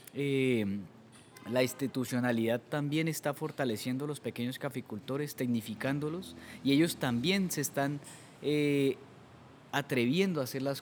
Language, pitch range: Spanish, 120-140 Hz